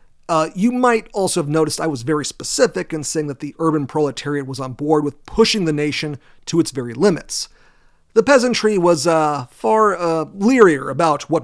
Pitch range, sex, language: 145-175 Hz, male, English